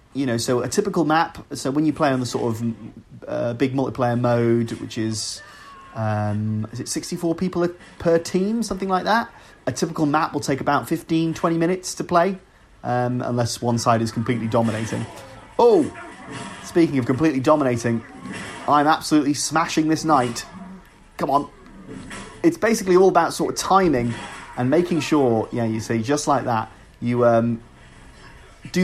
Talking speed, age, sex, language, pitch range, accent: 165 wpm, 30-49, male, English, 115-155 Hz, British